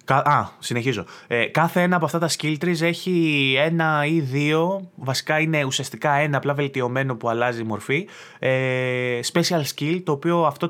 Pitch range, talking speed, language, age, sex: 120-165 Hz, 170 wpm, Greek, 20-39, male